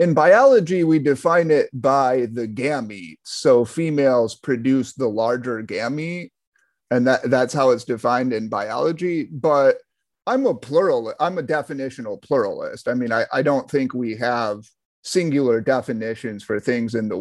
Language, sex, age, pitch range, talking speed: English, male, 30-49, 125-185 Hz, 150 wpm